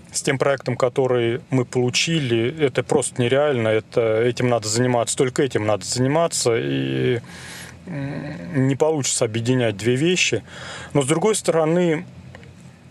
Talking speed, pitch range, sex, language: 125 wpm, 115-145 Hz, male, Russian